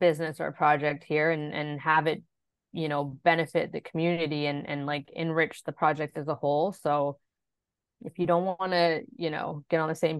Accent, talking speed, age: American, 205 wpm, 20-39